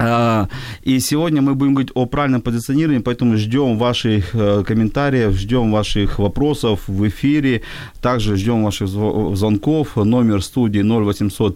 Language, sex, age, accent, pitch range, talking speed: Ukrainian, male, 40-59, native, 105-130 Hz, 125 wpm